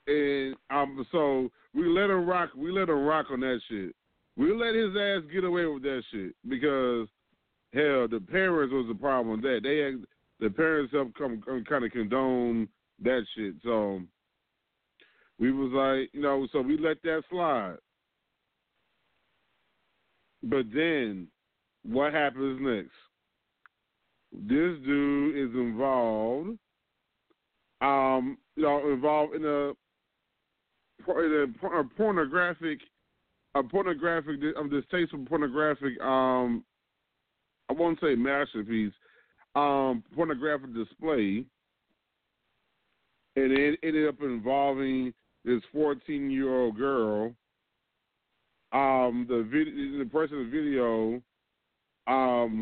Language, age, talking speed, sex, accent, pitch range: English, 40-59, 115 wpm, male, American, 120-150 Hz